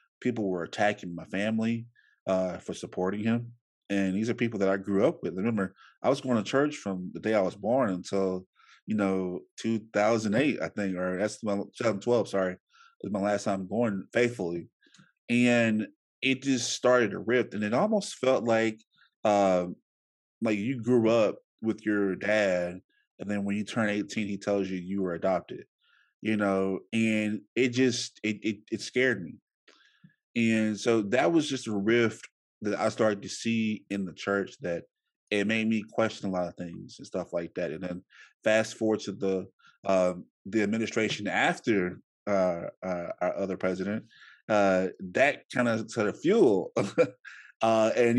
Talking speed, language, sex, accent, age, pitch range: 180 wpm, English, male, American, 20-39, 95-115 Hz